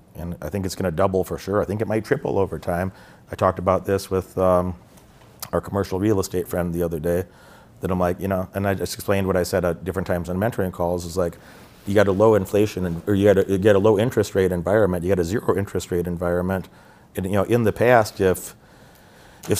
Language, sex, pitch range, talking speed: English, male, 90-100 Hz, 240 wpm